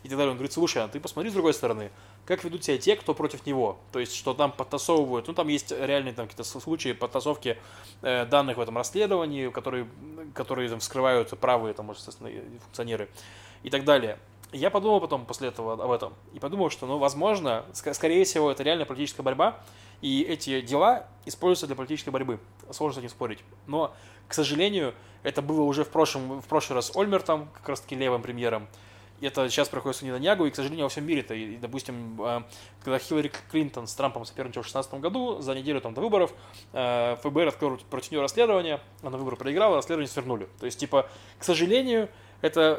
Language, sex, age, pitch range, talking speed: Russian, male, 20-39, 120-155 Hz, 190 wpm